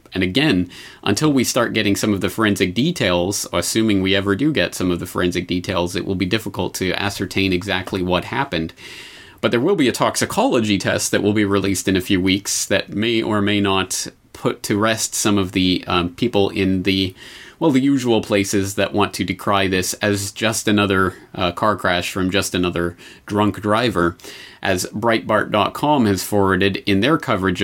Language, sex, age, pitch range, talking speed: English, male, 30-49, 95-110 Hz, 190 wpm